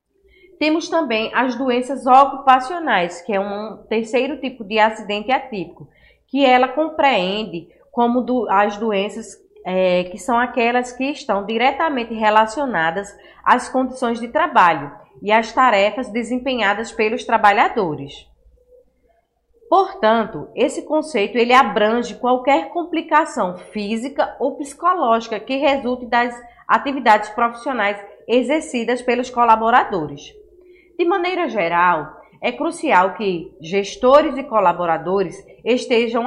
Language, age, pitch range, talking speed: Portuguese, 20-39, 220-275 Hz, 105 wpm